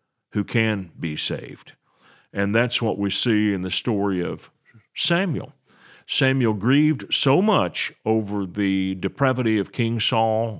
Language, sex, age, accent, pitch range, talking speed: English, male, 50-69, American, 95-125 Hz, 135 wpm